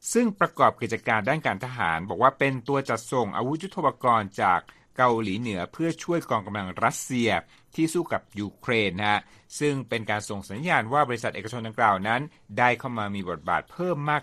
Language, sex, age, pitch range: Thai, male, 60-79, 105-135 Hz